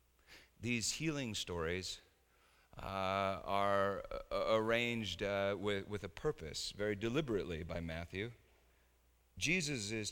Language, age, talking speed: English, 40-59, 100 wpm